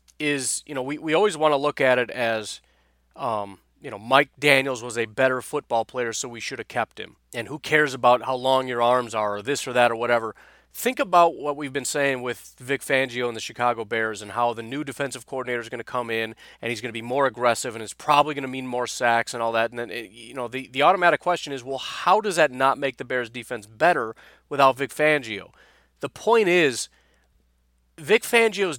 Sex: male